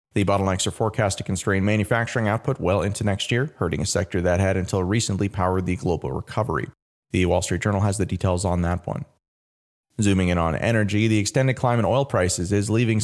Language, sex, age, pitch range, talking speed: English, male, 30-49, 95-125 Hz, 205 wpm